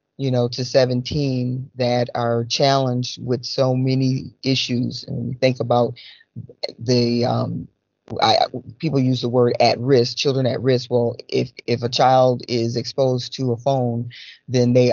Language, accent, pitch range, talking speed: English, American, 120-135 Hz, 155 wpm